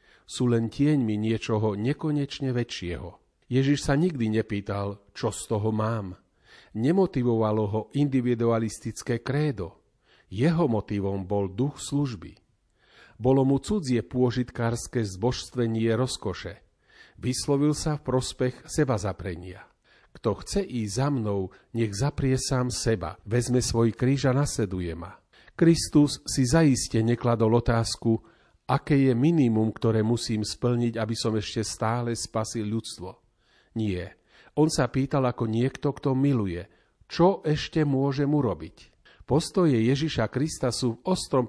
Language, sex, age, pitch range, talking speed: Slovak, male, 40-59, 110-140 Hz, 125 wpm